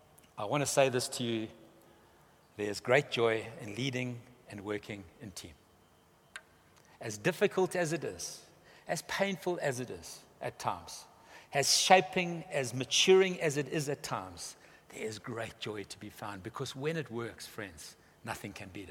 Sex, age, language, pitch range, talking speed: male, 60-79, English, 115-155 Hz, 160 wpm